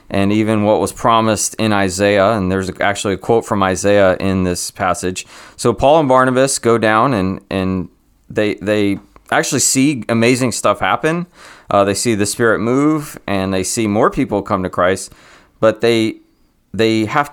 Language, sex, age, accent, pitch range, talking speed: English, male, 30-49, American, 95-120 Hz, 175 wpm